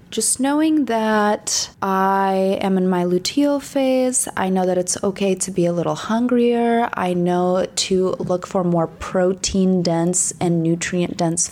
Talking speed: 145 wpm